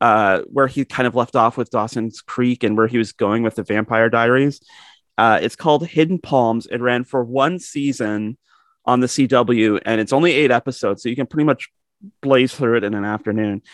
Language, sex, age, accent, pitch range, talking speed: English, male, 30-49, American, 115-145 Hz, 210 wpm